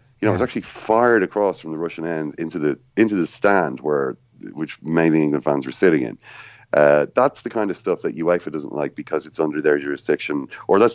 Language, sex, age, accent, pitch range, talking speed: English, male, 30-49, Irish, 85-120 Hz, 225 wpm